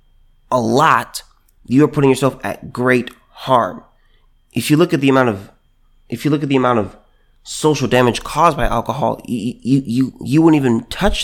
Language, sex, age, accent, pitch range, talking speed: English, male, 30-49, American, 120-150 Hz, 175 wpm